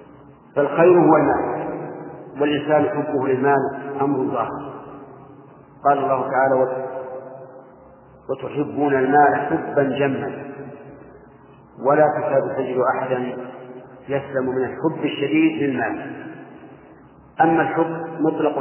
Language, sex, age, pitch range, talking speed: English, male, 40-59, 130-145 Hz, 85 wpm